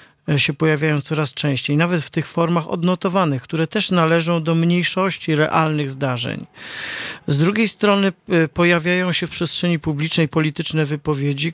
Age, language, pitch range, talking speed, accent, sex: 40-59, Polish, 145-175 Hz, 135 wpm, native, male